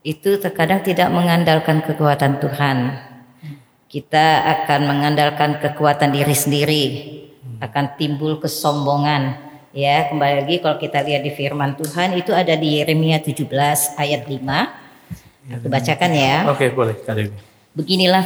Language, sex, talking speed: Indonesian, male, 115 wpm